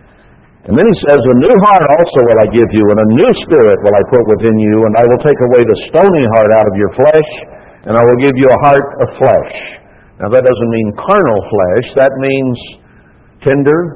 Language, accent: English, American